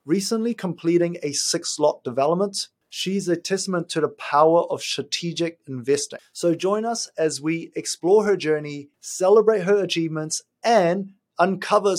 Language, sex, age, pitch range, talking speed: English, male, 30-49, 140-180 Hz, 135 wpm